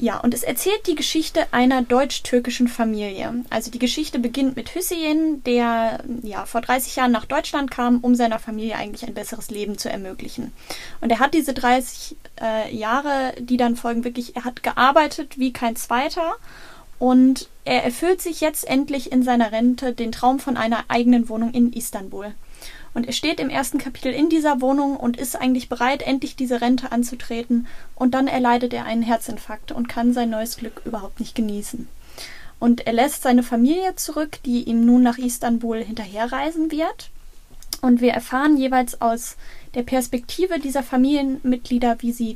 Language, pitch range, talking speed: German, 235-275 Hz, 170 wpm